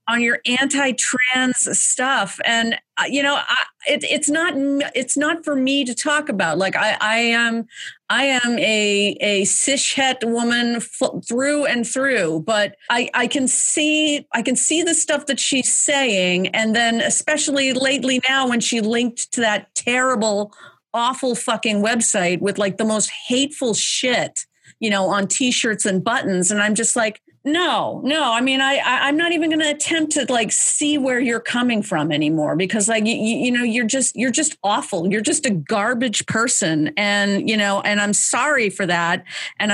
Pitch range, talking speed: 205-265 Hz, 180 wpm